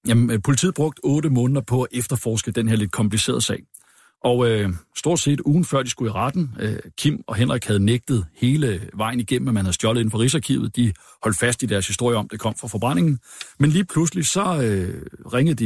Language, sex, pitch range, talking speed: Danish, male, 110-135 Hz, 220 wpm